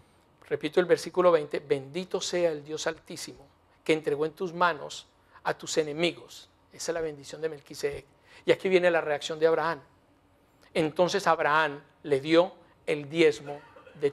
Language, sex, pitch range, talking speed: English, male, 165-275 Hz, 155 wpm